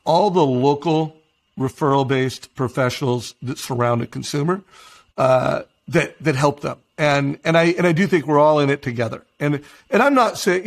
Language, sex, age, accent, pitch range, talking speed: English, male, 50-69, American, 130-155 Hz, 175 wpm